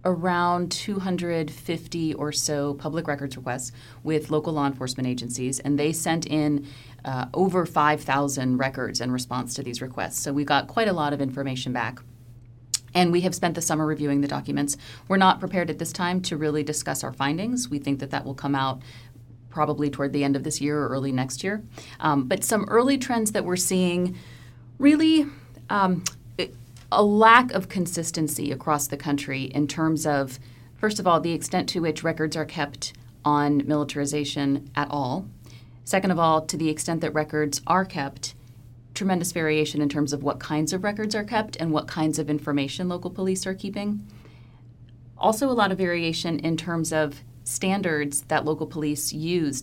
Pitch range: 130-170 Hz